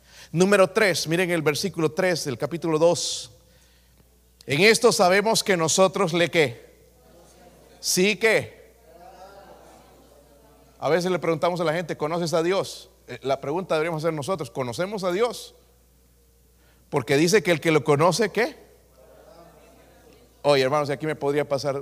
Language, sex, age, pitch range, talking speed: Spanish, male, 40-59, 130-180 Hz, 140 wpm